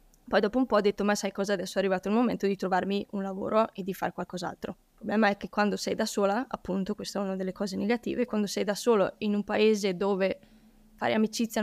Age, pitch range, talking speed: 10-29, 200-230 Hz, 245 wpm